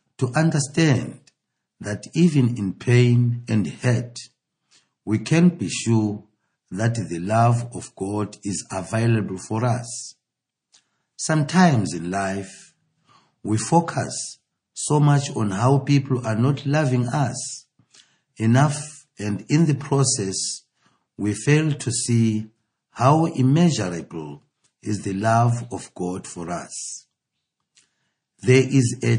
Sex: male